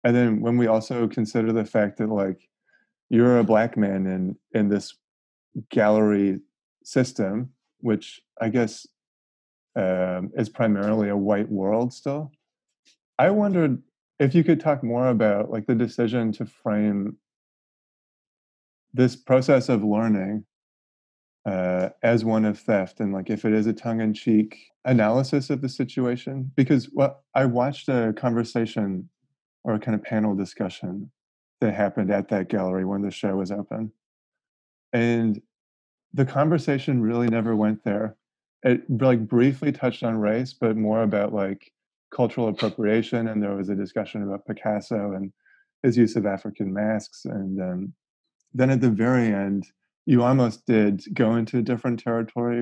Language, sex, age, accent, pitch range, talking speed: English, male, 20-39, American, 105-120 Hz, 150 wpm